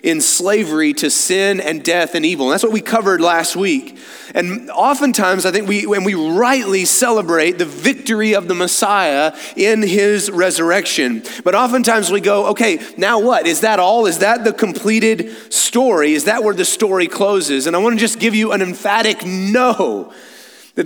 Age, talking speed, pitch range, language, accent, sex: 30-49, 180 wpm, 170-225 Hz, English, American, male